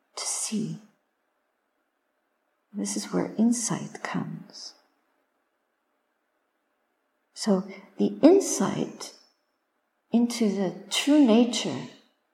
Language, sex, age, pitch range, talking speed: English, female, 50-69, 200-245 Hz, 70 wpm